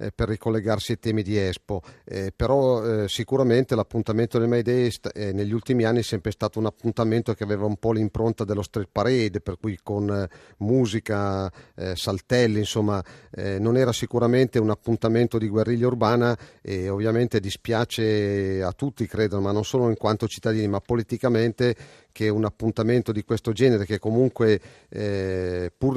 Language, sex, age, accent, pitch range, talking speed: Italian, male, 40-59, native, 105-120 Hz, 165 wpm